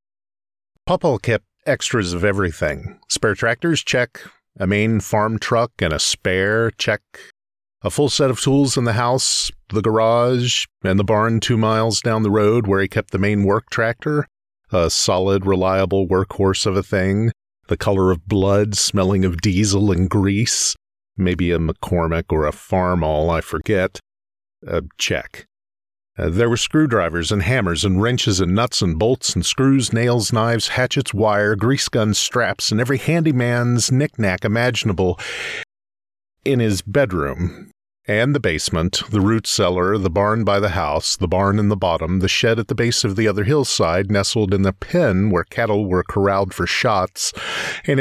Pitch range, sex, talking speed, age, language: 95-115 Hz, male, 165 wpm, 50-69, English